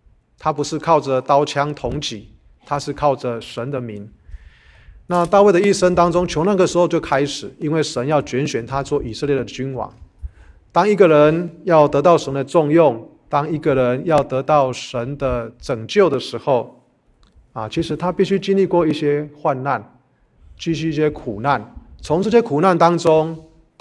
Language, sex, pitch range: Chinese, male, 125-160 Hz